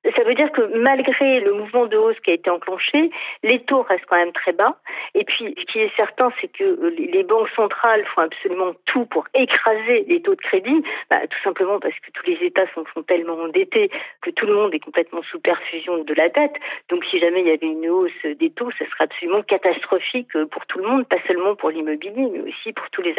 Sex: female